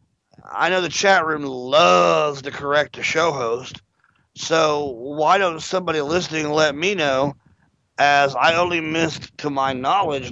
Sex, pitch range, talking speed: male, 140-170 Hz, 150 wpm